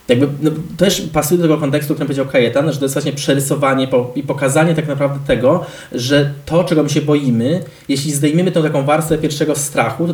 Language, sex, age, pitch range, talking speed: Polish, male, 20-39, 135-165 Hz, 215 wpm